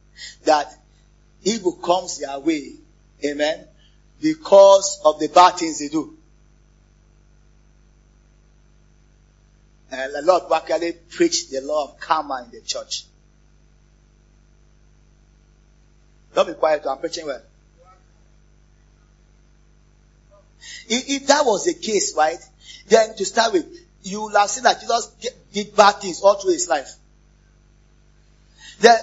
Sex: male